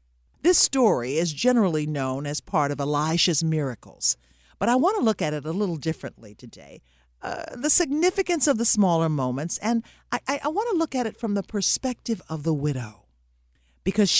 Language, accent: English, American